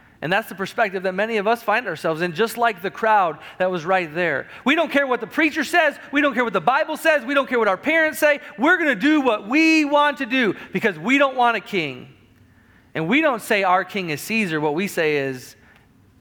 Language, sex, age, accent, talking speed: English, male, 40-59, American, 250 wpm